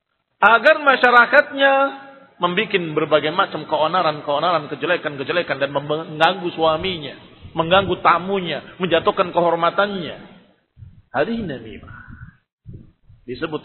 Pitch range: 165-205 Hz